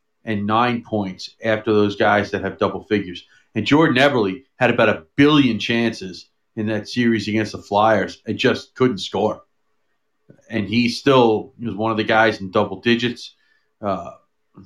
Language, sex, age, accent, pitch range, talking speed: English, male, 40-59, American, 105-120 Hz, 165 wpm